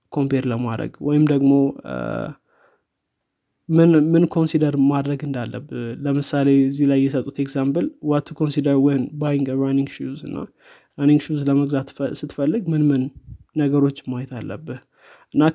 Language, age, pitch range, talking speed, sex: Amharic, 20-39, 135-155 Hz, 95 wpm, male